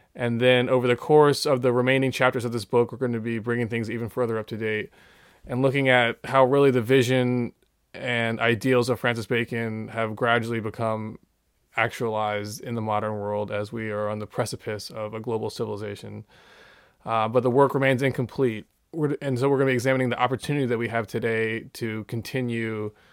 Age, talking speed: 20-39, 190 wpm